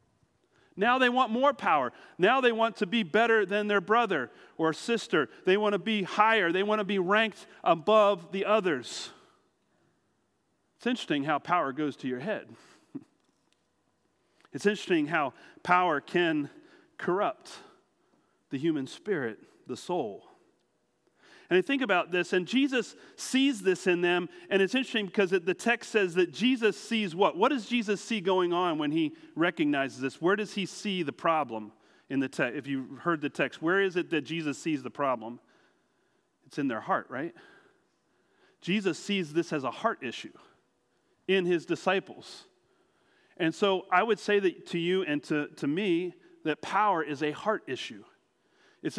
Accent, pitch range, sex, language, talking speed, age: American, 170-235 Hz, male, English, 170 wpm, 40-59